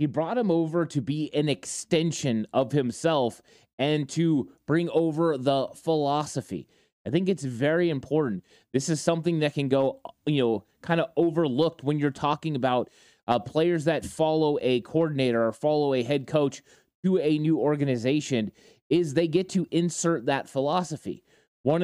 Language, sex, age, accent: English, male, 20-39, American